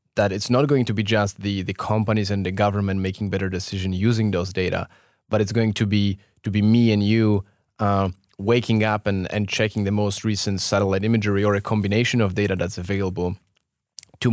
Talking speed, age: 200 wpm, 20-39